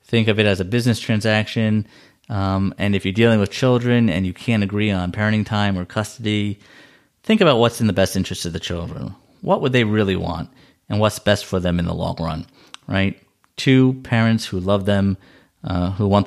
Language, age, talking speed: English, 30-49, 205 wpm